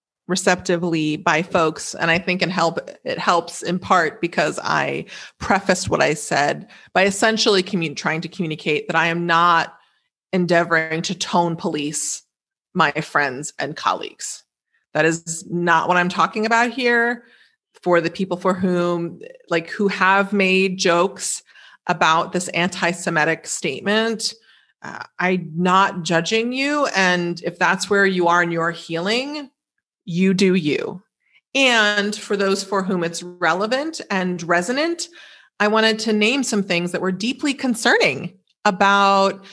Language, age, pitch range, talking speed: English, 30-49, 175-215 Hz, 140 wpm